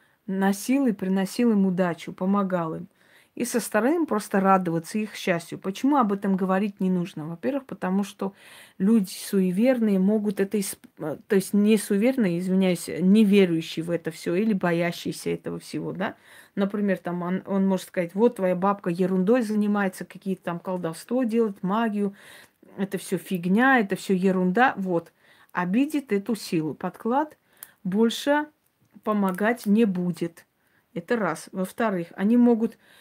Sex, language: female, Russian